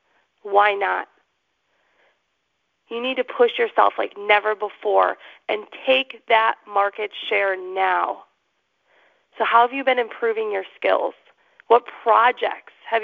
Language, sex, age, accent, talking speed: English, female, 30-49, American, 125 wpm